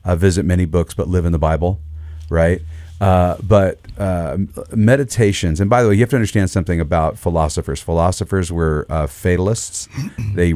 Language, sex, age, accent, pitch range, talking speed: English, male, 40-59, American, 80-95 Hz, 170 wpm